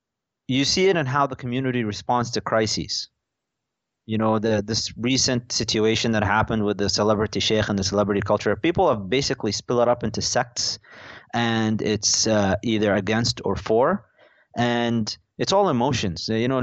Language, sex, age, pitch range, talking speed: English, male, 30-49, 110-130 Hz, 170 wpm